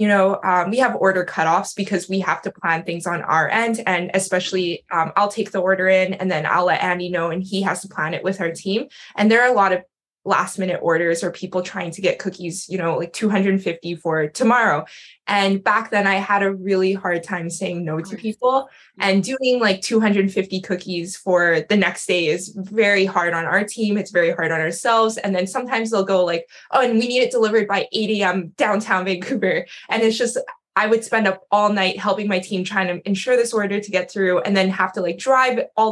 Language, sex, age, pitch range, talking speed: English, female, 20-39, 180-210 Hz, 225 wpm